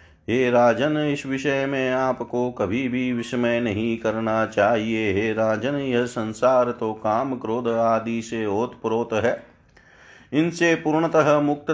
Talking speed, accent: 135 wpm, native